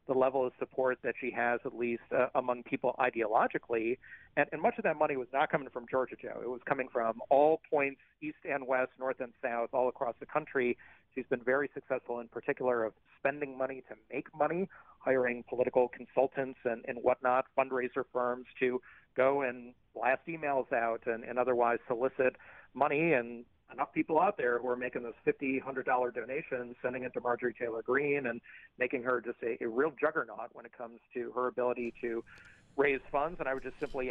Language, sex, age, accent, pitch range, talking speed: English, male, 40-59, American, 125-145 Hz, 195 wpm